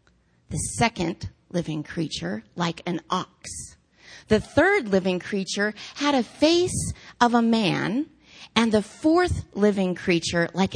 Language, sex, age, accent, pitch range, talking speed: English, female, 30-49, American, 170-250 Hz, 130 wpm